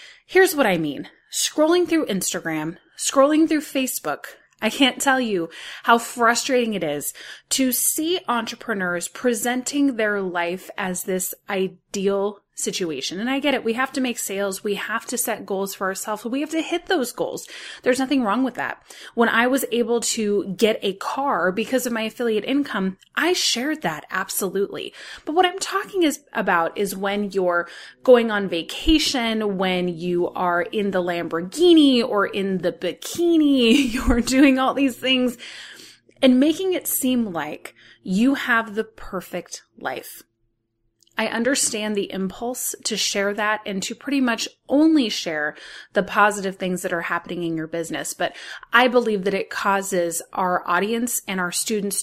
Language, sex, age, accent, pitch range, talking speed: English, female, 20-39, American, 190-260 Hz, 165 wpm